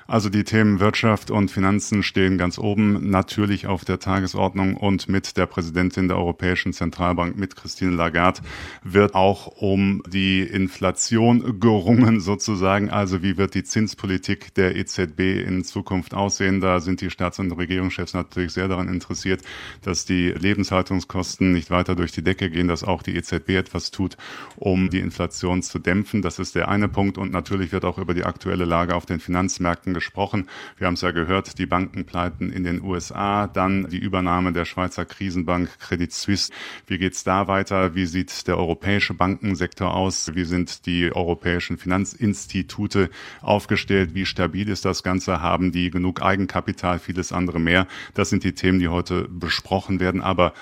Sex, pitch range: male, 90-100 Hz